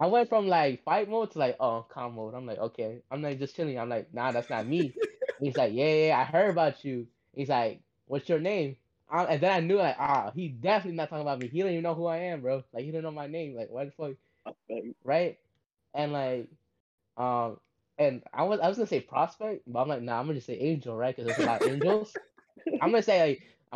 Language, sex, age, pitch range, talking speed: English, male, 10-29, 120-160 Hz, 255 wpm